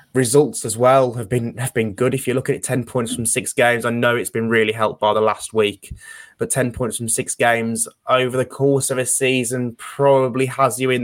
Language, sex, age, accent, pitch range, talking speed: English, male, 20-39, British, 110-130 Hz, 240 wpm